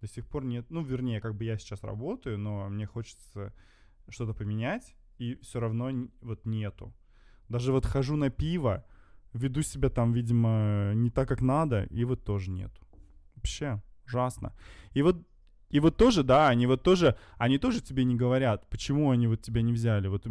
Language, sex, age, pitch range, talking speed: English, male, 20-39, 105-125 Hz, 180 wpm